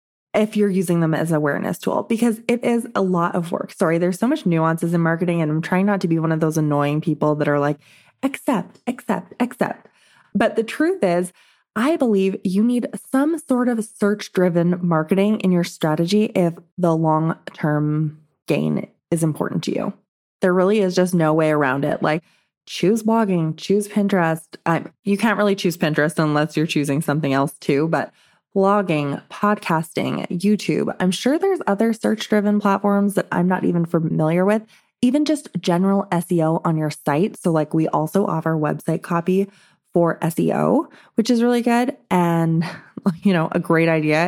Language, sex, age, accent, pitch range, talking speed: English, female, 20-39, American, 160-210 Hz, 180 wpm